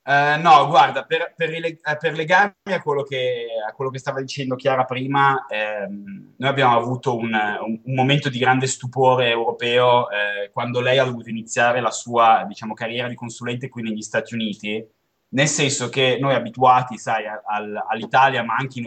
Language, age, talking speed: Italian, 20-39, 170 wpm